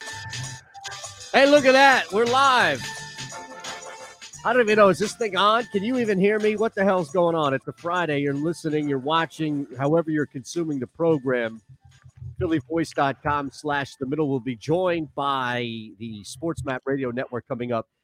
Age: 50-69